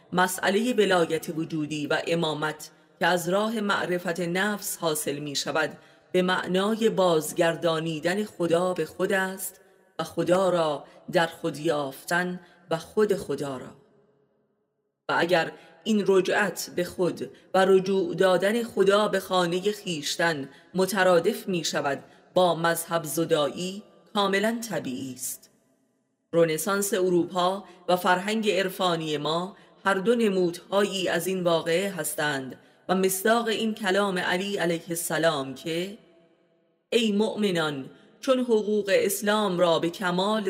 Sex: female